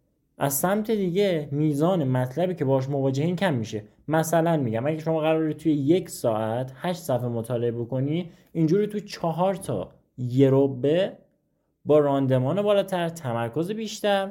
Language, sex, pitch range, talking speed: Persian, male, 135-195 Hz, 135 wpm